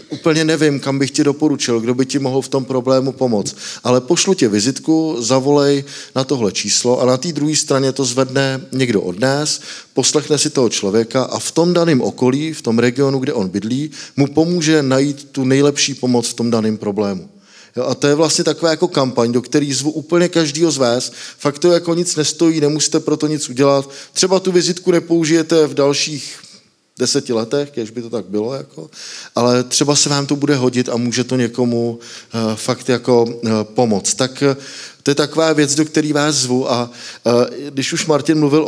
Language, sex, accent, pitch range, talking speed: Czech, male, native, 120-150 Hz, 190 wpm